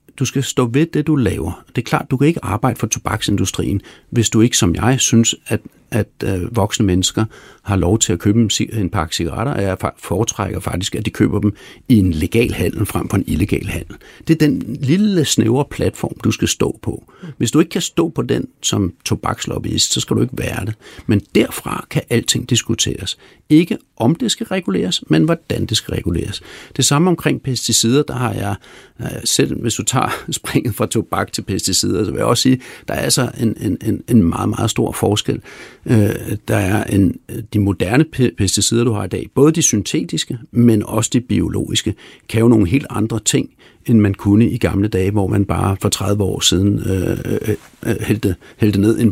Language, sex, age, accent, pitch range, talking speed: Danish, male, 60-79, native, 100-125 Hz, 205 wpm